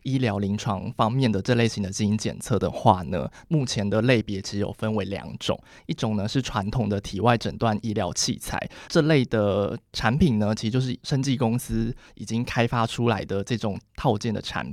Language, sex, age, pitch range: Chinese, male, 20-39, 105-125 Hz